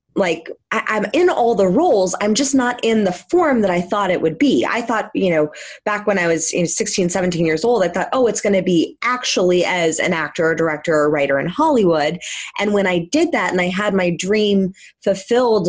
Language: English